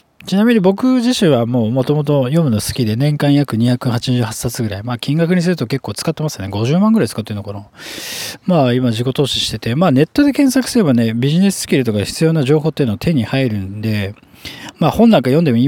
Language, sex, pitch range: Japanese, male, 115-165 Hz